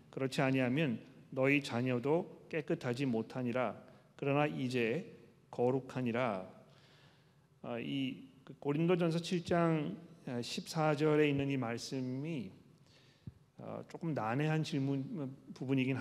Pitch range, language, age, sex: 130-155 Hz, Korean, 40-59, male